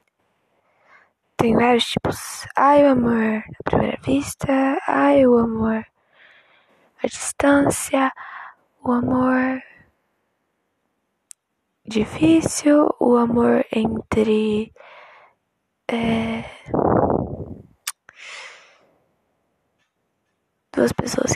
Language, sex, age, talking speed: Portuguese, female, 10-29, 60 wpm